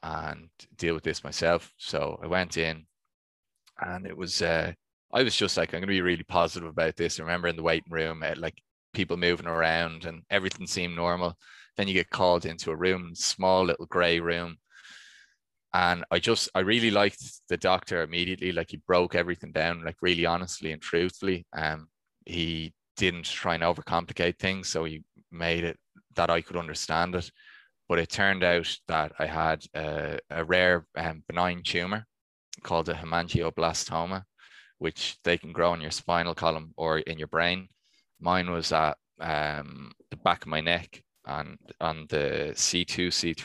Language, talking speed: English, 175 wpm